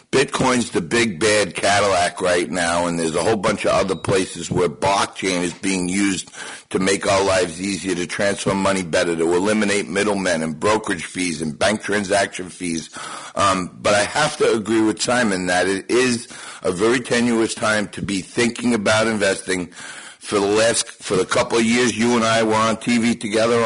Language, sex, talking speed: English, male, 190 wpm